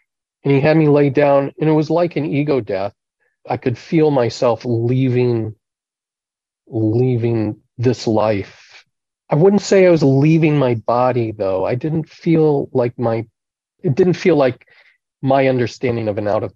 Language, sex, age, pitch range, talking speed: English, male, 40-59, 115-145 Hz, 165 wpm